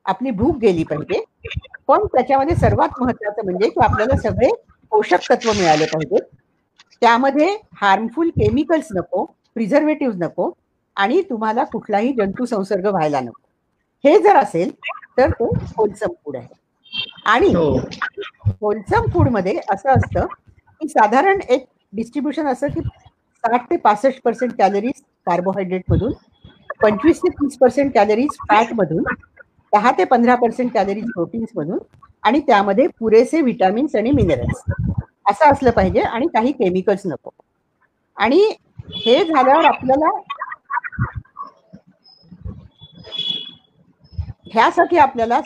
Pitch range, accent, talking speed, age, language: 210-290 Hz, native, 90 wpm, 50-69, Marathi